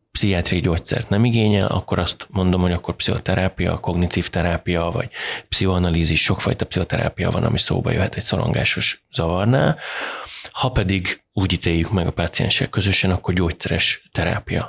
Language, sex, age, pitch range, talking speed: Hungarian, male, 30-49, 90-105 Hz, 140 wpm